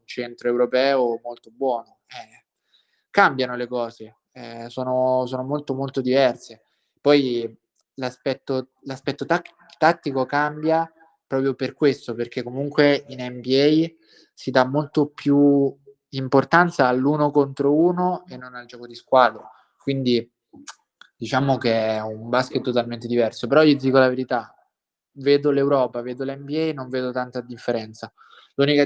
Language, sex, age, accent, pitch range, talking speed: Italian, male, 20-39, native, 120-140 Hz, 125 wpm